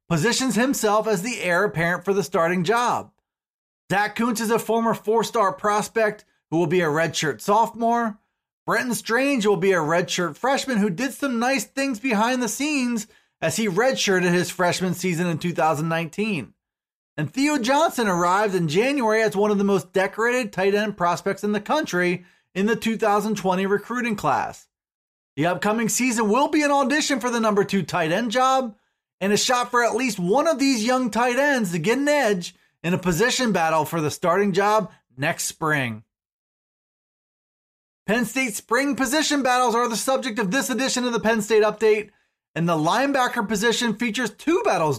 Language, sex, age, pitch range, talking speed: English, male, 30-49, 180-240 Hz, 175 wpm